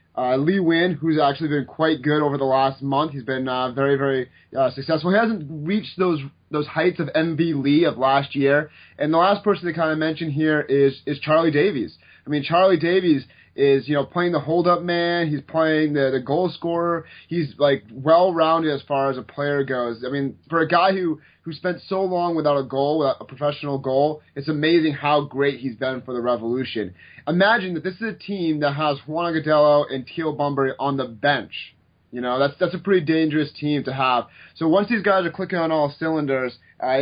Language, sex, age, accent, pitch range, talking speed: English, male, 30-49, American, 135-165 Hz, 215 wpm